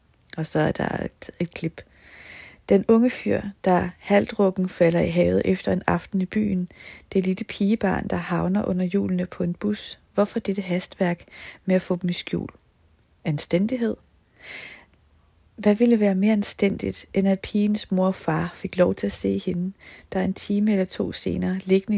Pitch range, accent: 170-200 Hz, native